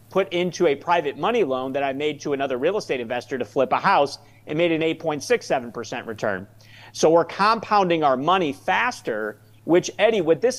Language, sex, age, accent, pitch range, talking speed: English, male, 40-59, American, 130-175 Hz, 185 wpm